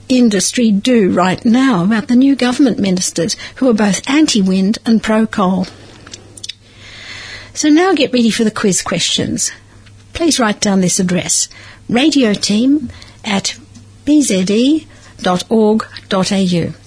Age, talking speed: 60-79, 115 wpm